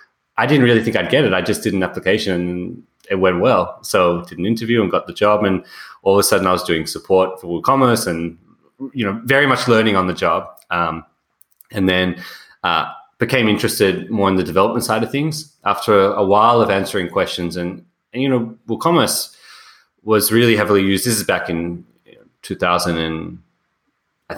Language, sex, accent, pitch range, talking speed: English, male, Australian, 90-115 Hz, 200 wpm